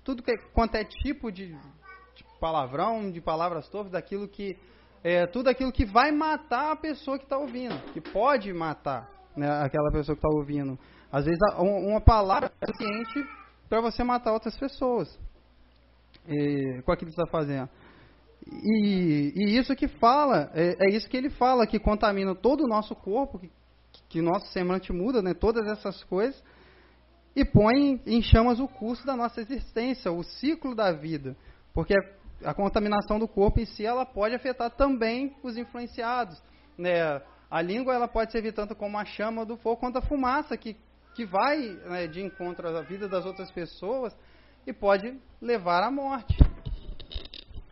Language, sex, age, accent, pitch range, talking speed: Portuguese, male, 20-39, Brazilian, 170-245 Hz, 165 wpm